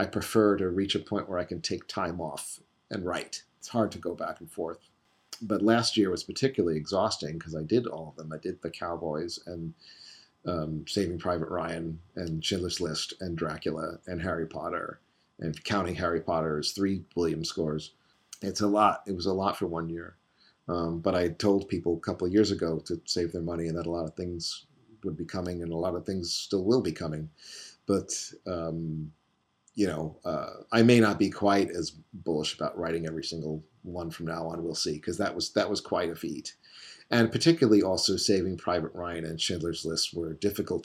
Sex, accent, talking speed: male, American, 205 wpm